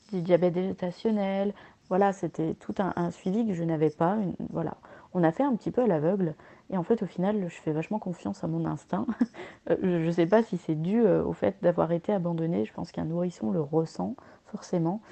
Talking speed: 215 wpm